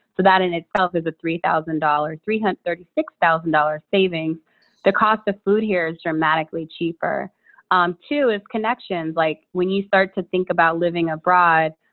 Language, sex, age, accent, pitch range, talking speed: English, female, 20-39, American, 160-190 Hz, 150 wpm